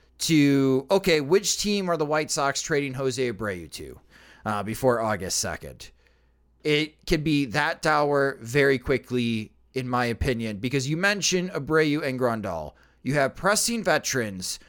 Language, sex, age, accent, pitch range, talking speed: English, male, 30-49, American, 125-185 Hz, 145 wpm